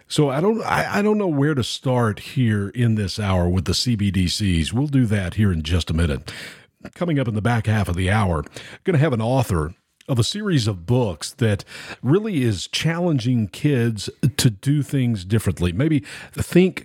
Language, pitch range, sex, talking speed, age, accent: English, 95-125 Hz, male, 195 wpm, 50-69, American